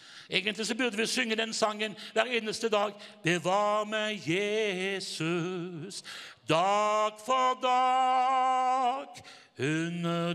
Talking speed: 105 wpm